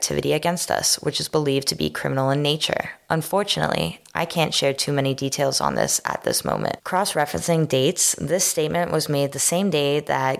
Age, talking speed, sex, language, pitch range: 10-29, 190 wpm, female, English, 135-160 Hz